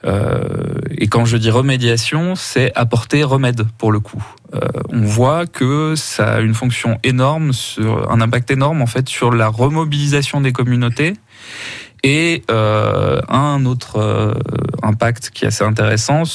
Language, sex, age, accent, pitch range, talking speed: French, male, 20-39, French, 110-135 Hz, 155 wpm